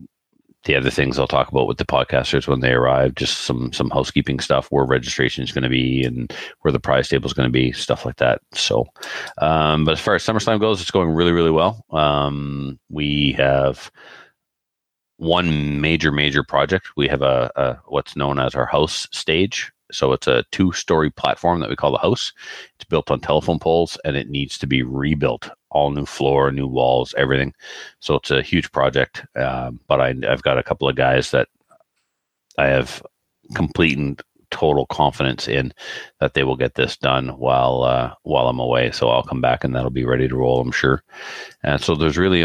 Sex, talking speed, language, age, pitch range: male, 200 wpm, English, 40-59, 65-75 Hz